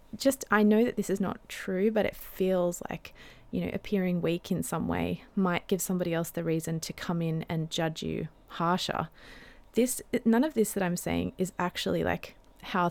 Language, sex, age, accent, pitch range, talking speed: English, female, 20-39, Australian, 180-220 Hz, 200 wpm